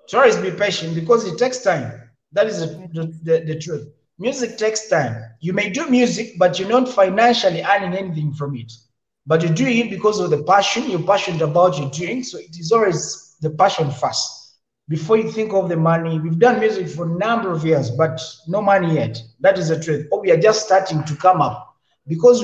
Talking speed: 210 wpm